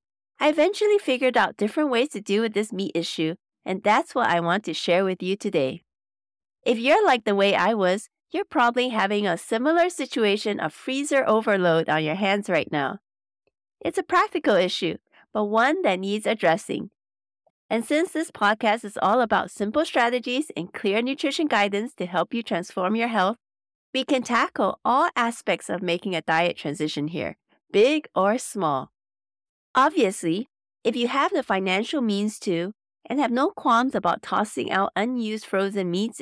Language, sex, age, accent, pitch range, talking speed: English, female, 40-59, American, 175-260 Hz, 170 wpm